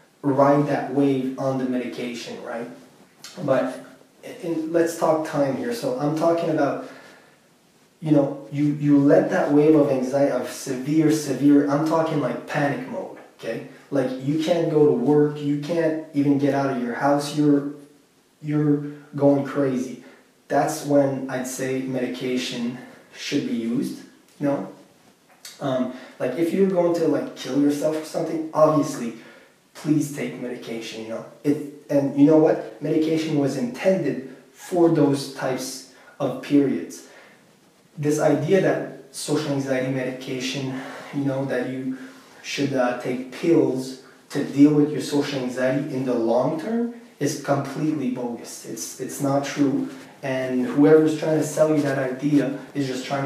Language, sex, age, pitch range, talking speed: English, male, 20-39, 130-150 Hz, 150 wpm